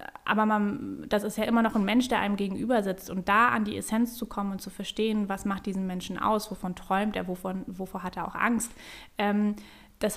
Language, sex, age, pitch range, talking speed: German, female, 20-39, 205-235 Hz, 220 wpm